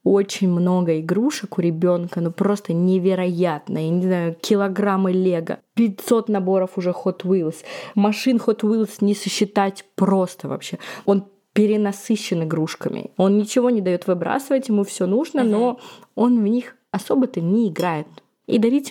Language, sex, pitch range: Russian, female, 180-225 Hz